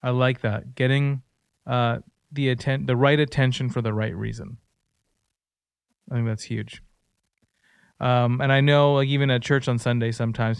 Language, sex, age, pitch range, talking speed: English, male, 30-49, 115-140 Hz, 165 wpm